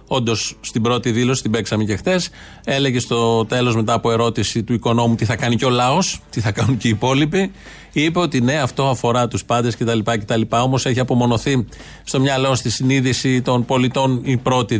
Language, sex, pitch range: Greek, male, 120-150 Hz